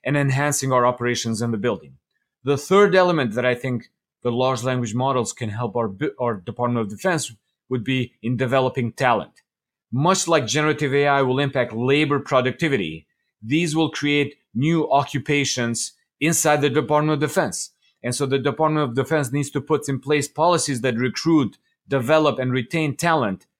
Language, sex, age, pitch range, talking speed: English, male, 30-49, 125-150 Hz, 165 wpm